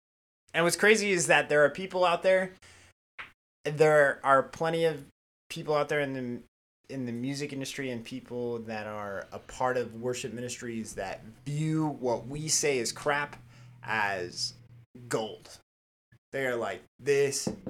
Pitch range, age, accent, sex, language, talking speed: 105-135 Hz, 20-39, American, male, English, 155 wpm